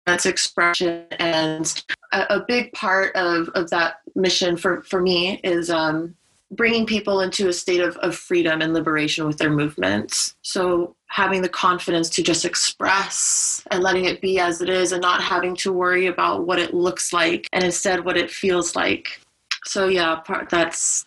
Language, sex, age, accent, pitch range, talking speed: English, female, 20-39, American, 165-185 Hz, 175 wpm